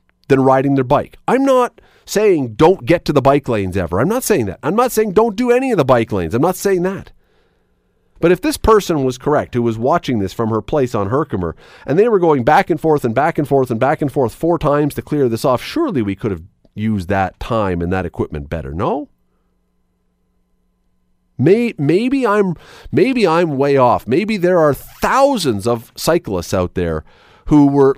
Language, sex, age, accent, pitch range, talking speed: English, male, 40-59, American, 100-165 Hz, 205 wpm